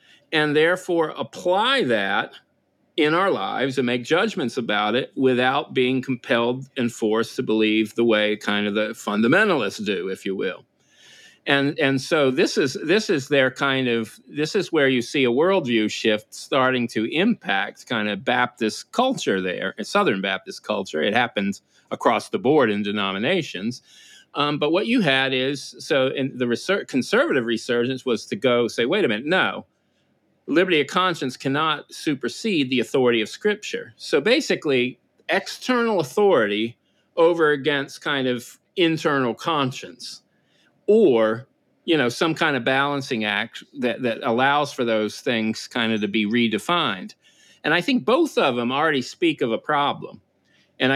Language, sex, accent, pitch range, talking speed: English, male, American, 115-150 Hz, 160 wpm